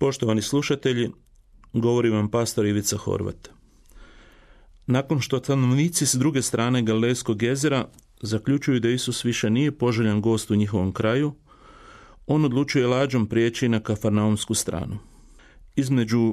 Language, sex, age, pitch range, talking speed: Croatian, male, 40-59, 110-135 Hz, 120 wpm